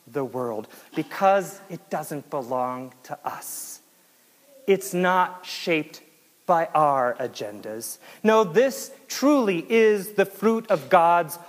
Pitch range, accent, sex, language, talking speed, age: 170-230 Hz, American, male, English, 115 wpm, 40-59